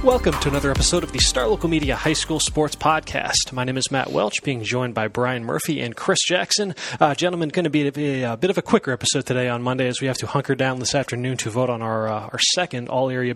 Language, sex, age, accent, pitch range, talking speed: English, male, 20-39, American, 125-145 Hz, 260 wpm